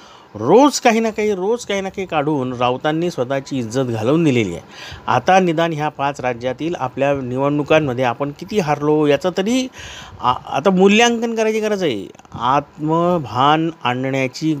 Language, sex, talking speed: Marathi, male, 145 wpm